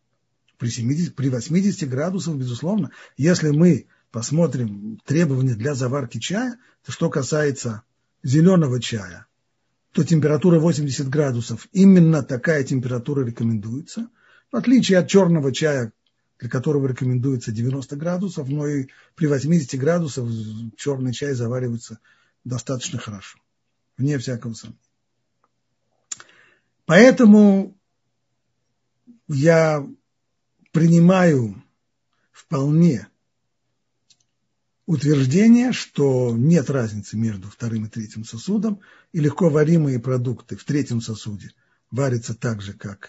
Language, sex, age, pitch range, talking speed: Russian, male, 50-69, 120-170 Hz, 100 wpm